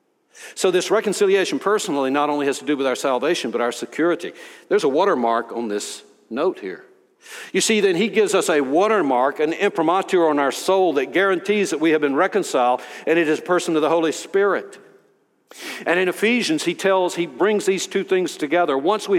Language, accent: English, American